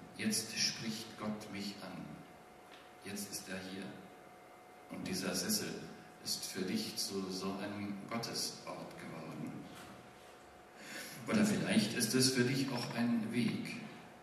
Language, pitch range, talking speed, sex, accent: German, 95-115 Hz, 120 wpm, male, German